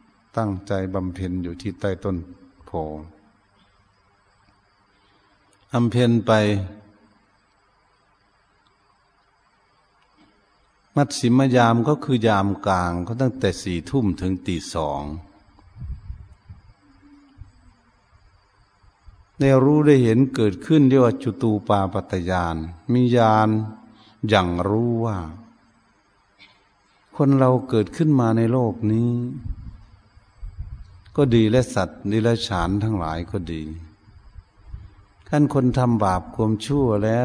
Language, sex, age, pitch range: Thai, male, 60-79, 95-115 Hz